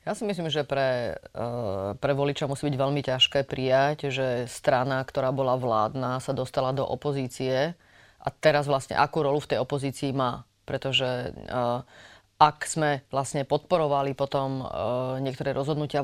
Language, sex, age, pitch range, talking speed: Slovak, female, 30-49, 135-150 Hz, 140 wpm